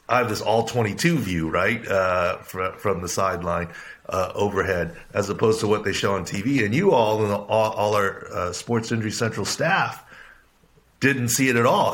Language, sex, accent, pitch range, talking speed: English, male, American, 95-115 Hz, 195 wpm